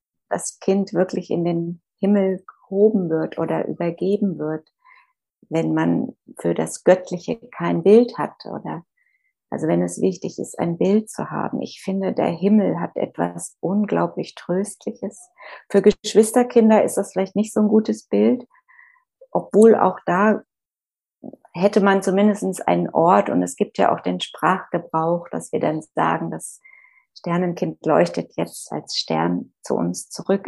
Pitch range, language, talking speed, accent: 165-215 Hz, German, 150 wpm, German